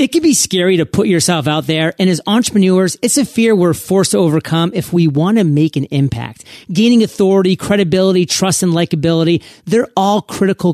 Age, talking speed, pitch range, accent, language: 30-49, 195 wpm, 160-195 Hz, American, English